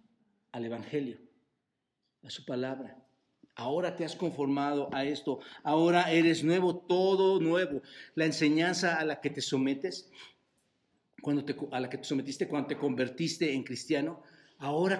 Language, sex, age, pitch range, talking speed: Spanish, male, 50-69, 140-185 Hz, 145 wpm